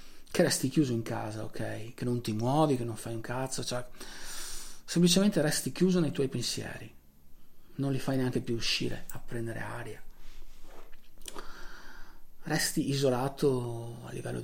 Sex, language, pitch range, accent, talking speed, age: male, Italian, 115-140 Hz, native, 145 wpm, 40-59